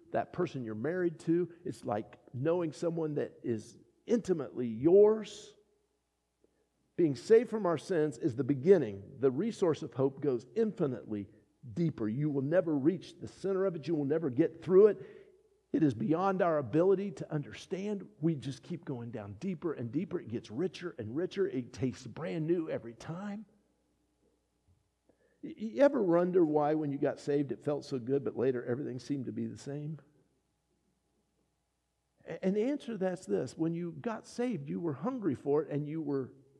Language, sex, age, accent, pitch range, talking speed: English, male, 50-69, American, 140-220 Hz, 175 wpm